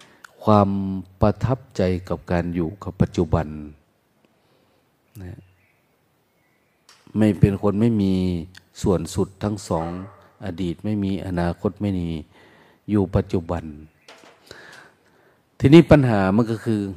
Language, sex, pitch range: Thai, male, 90-115 Hz